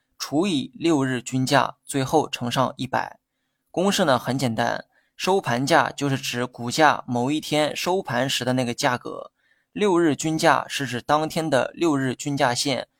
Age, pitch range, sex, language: 20-39, 130-155 Hz, male, Chinese